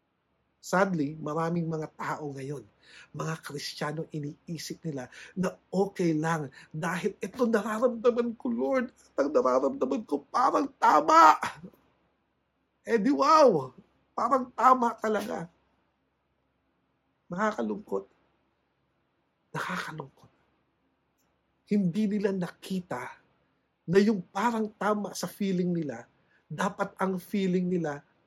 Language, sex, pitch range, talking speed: English, male, 130-200 Hz, 95 wpm